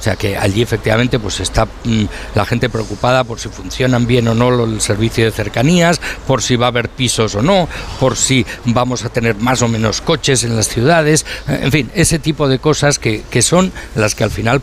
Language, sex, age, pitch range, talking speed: Spanish, male, 60-79, 105-130 Hz, 220 wpm